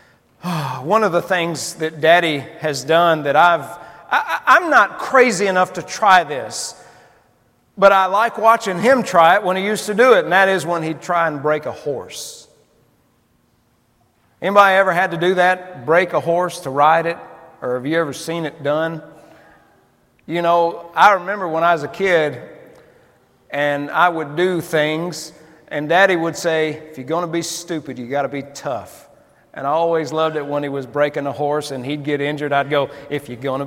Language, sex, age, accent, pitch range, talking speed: English, male, 40-59, American, 140-170 Hz, 190 wpm